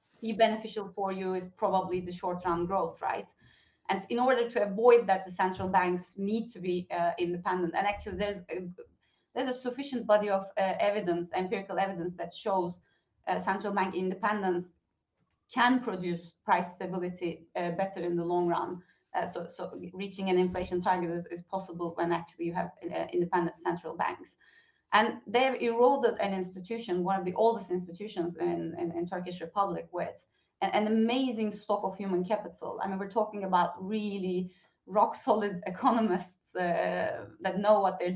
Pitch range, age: 180-215 Hz, 30-49